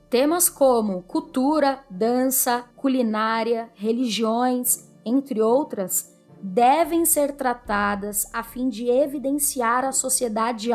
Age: 10-29